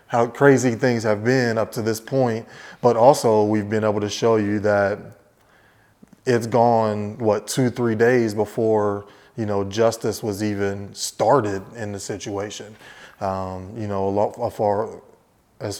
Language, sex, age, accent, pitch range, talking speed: English, male, 20-39, American, 95-110 Hz, 160 wpm